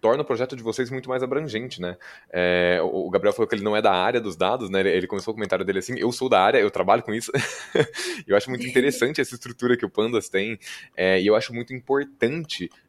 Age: 20-39